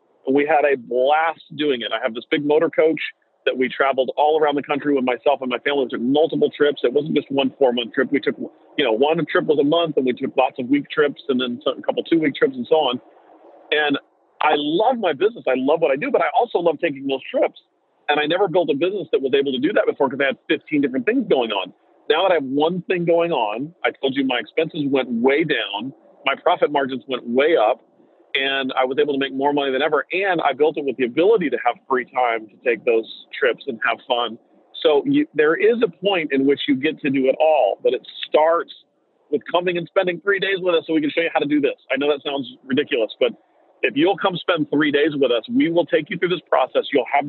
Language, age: English, 40-59